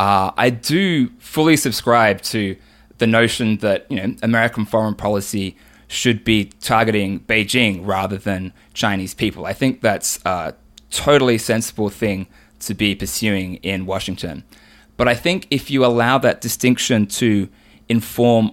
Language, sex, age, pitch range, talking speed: English, male, 20-39, 105-125 Hz, 145 wpm